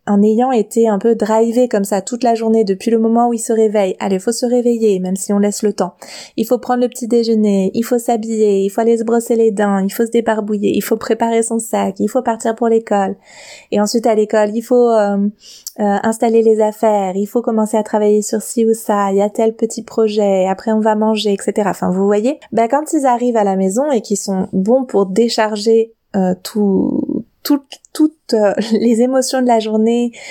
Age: 20-39